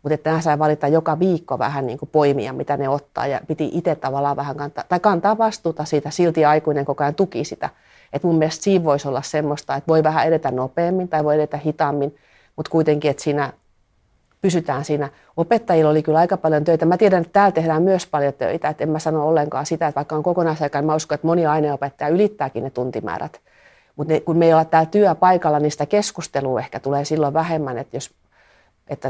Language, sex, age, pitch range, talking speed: Finnish, female, 40-59, 145-165 Hz, 205 wpm